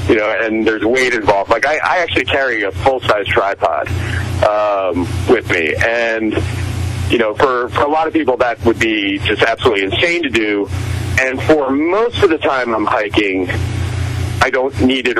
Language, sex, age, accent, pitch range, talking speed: English, male, 40-59, American, 100-125 Hz, 180 wpm